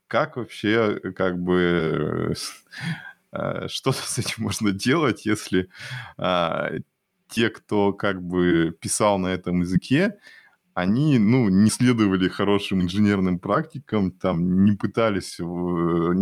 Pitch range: 85-100 Hz